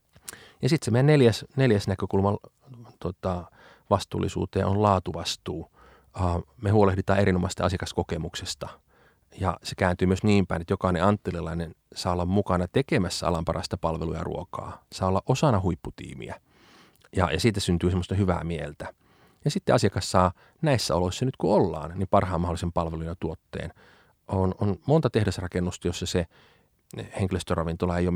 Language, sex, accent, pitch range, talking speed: Finnish, male, native, 85-100 Hz, 145 wpm